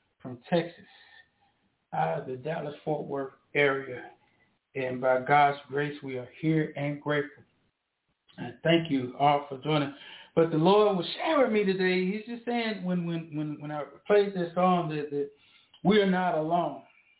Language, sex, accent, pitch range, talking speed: English, male, American, 145-185 Hz, 170 wpm